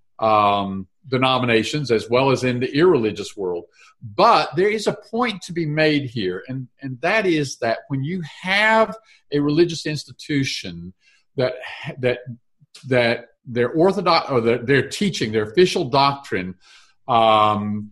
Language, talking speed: English, 140 wpm